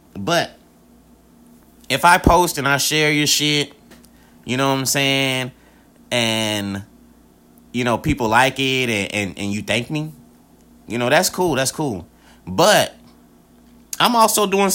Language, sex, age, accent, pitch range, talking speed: English, male, 30-49, American, 120-155 Hz, 145 wpm